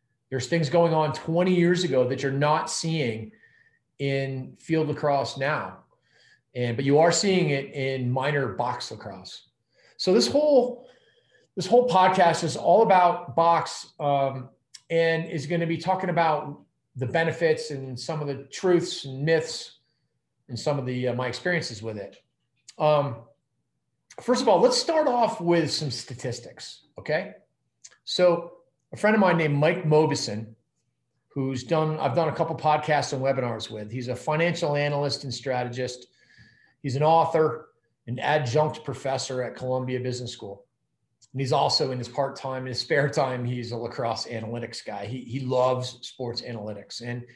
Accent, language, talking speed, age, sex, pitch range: American, English, 160 wpm, 40-59, male, 125-165 Hz